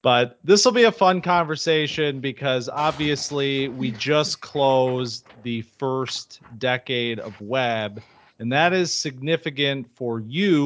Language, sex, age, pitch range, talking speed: English, male, 30-49, 120-155 Hz, 130 wpm